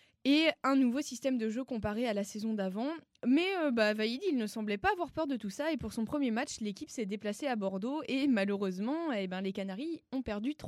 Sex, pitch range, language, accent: female, 205-270 Hz, French, French